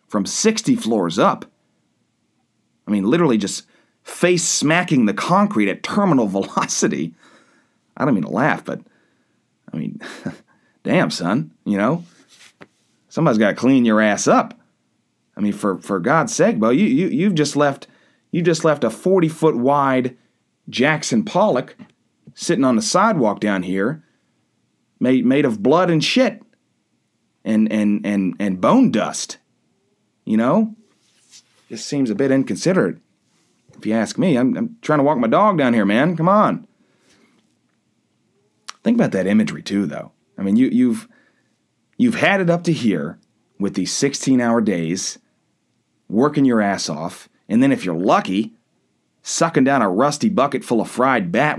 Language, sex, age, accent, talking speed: English, male, 30-49, American, 155 wpm